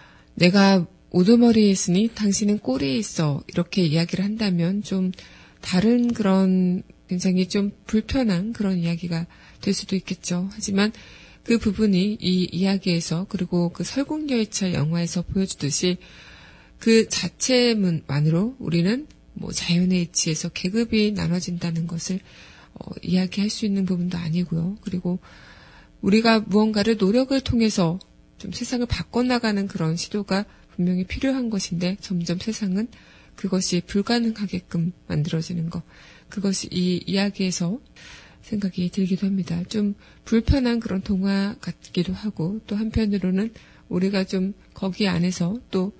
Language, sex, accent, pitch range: Korean, female, native, 175-210 Hz